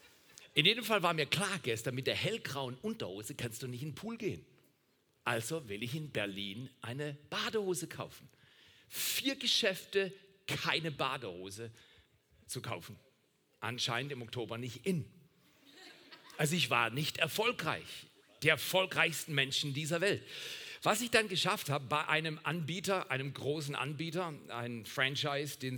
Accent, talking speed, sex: German, 140 wpm, male